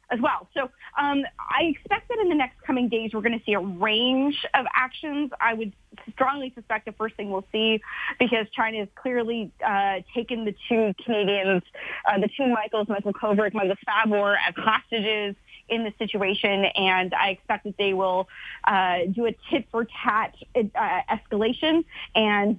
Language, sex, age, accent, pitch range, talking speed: English, female, 20-39, American, 195-240 Hz, 175 wpm